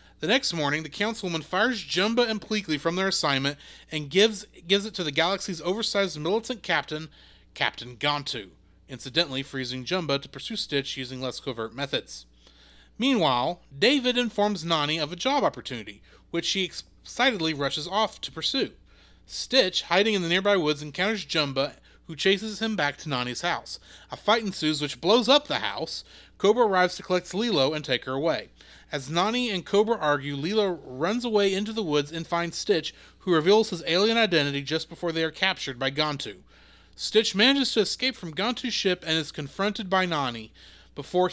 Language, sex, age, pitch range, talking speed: English, male, 30-49, 145-205 Hz, 175 wpm